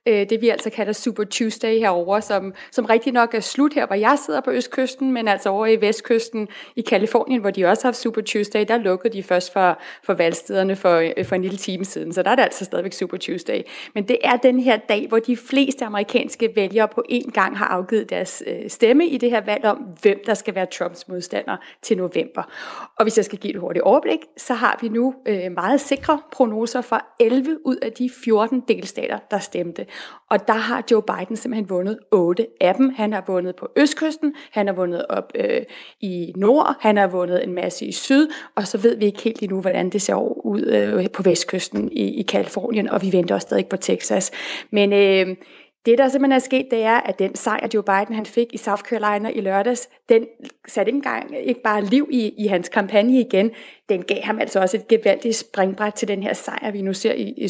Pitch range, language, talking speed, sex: 200-255 Hz, Danish, 220 wpm, female